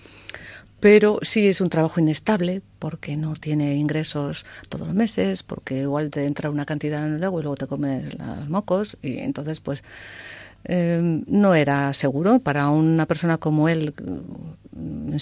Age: 50-69